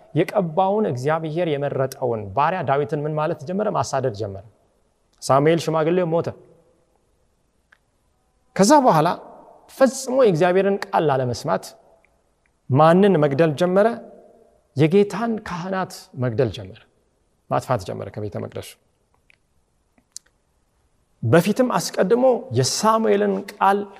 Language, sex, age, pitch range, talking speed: Amharic, male, 40-59, 130-200 Hz, 95 wpm